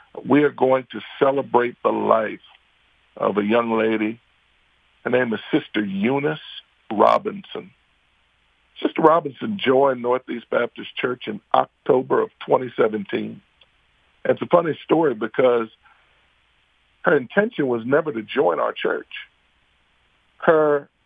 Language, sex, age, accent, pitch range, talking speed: English, male, 50-69, American, 110-145 Hz, 115 wpm